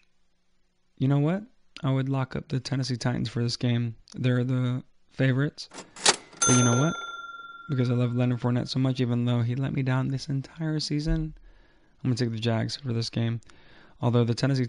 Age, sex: 20-39, male